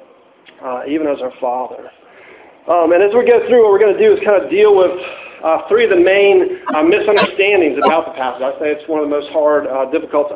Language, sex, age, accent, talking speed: English, male, 50-69, American, 245 wpm